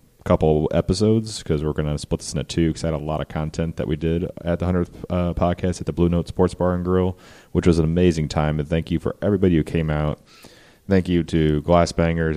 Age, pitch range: 30-49, 75-85 Hz